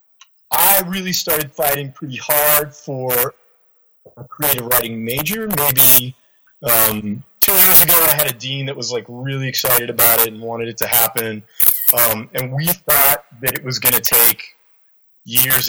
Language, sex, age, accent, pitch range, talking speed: English, male, 30-49, American, 120-140 Hz, 165 wpm